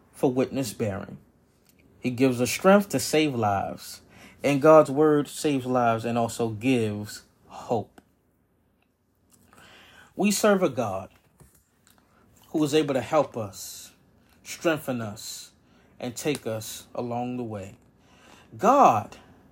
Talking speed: 115 wpm